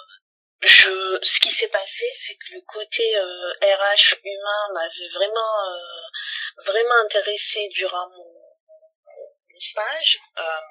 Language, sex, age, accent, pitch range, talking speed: French, female, 30-49, French, 185-300 Hz, 120 wpm